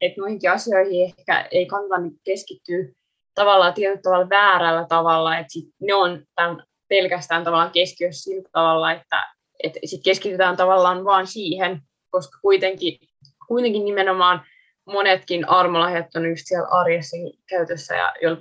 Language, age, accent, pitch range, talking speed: Finnish, 20-39, native, 175-230 Hz, 125 wpm